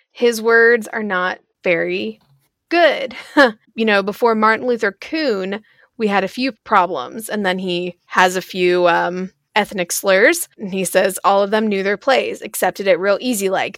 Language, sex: English, female